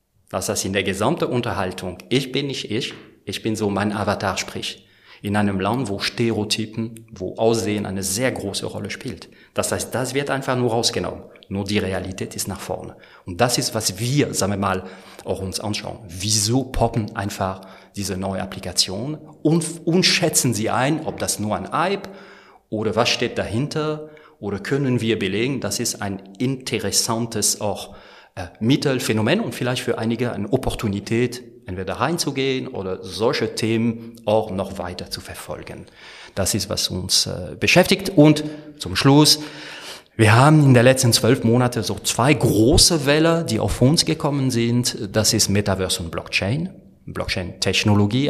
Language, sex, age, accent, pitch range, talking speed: German, male, 40-59, German, 100-130 Hz, 165 wpm